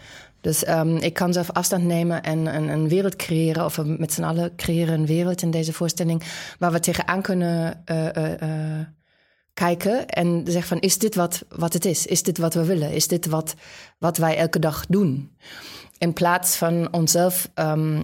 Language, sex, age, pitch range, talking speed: English, female, 20-39, 160-180 Hz, 195 wpm